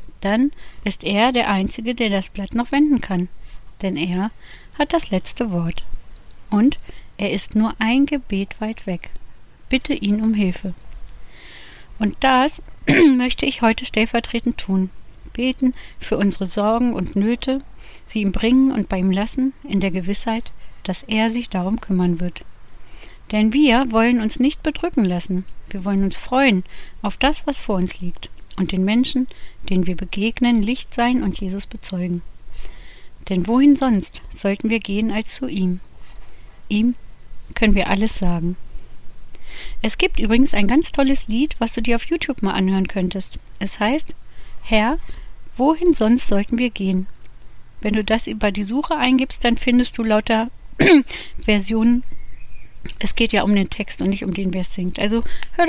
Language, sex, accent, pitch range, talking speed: German, female, German, 190-245 Hz, 160 wpm